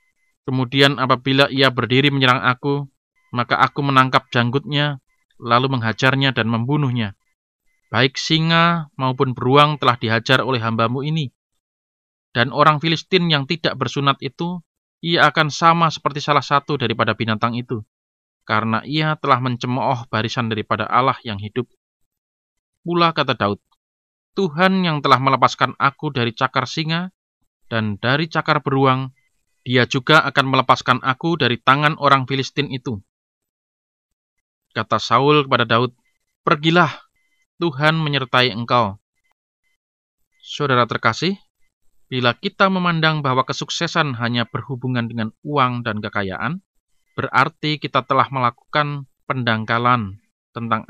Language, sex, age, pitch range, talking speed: Indonesian, male, 20-39, 120-155 Hz, 120 wpm